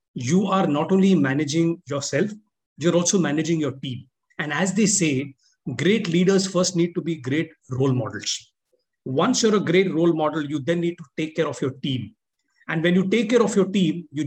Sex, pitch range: male, 150-195 Hz